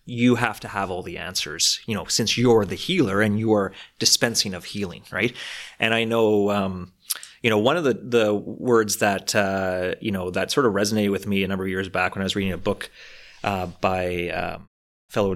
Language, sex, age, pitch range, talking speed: English, male, 30-49, 100-125 Hz, 220 wpm